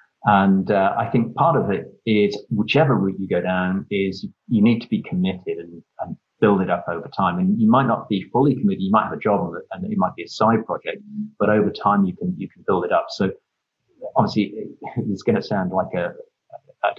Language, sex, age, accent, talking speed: English, male, 30-49, British, 230 wpm